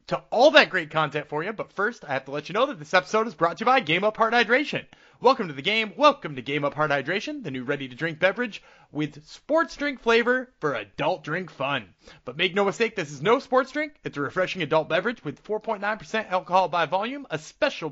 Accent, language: American, English